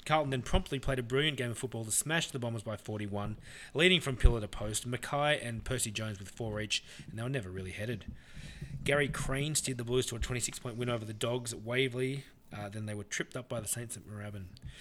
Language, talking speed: English, 240 wpm